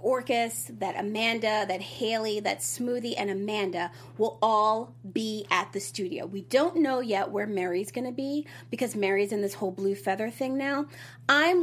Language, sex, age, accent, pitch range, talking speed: English, female, 30-49, American, 185-250 Hz, 170 wpm